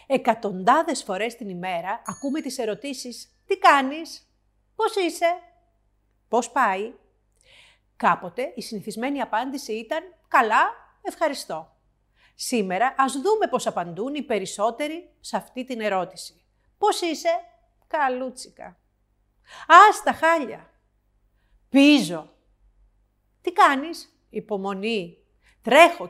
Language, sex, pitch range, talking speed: Greek, female, 210-290 Hz, 95 wpm